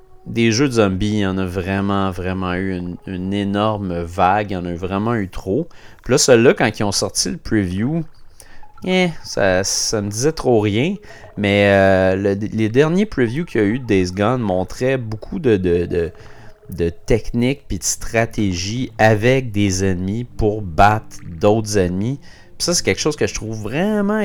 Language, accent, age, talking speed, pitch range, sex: French, Canadian, 30-49, 180 wpm, 95-130 Hz, male